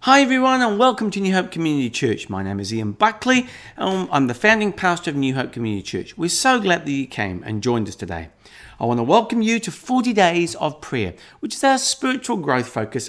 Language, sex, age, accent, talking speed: English, male, 50-69, British, 230 wpm